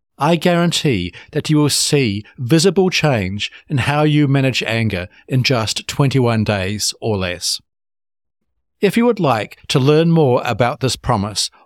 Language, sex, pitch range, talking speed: English, male, 105-150 Hz, 150 wpm